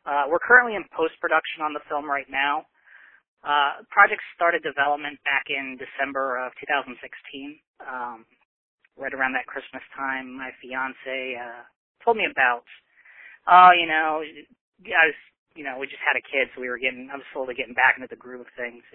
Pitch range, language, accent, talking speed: 130-165 Hz, English, American, 195 wpm